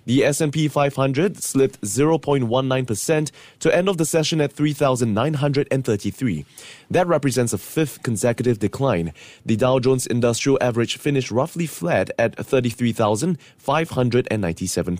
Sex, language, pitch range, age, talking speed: male, English, 115-145 Hz, 20-39, 110 wpm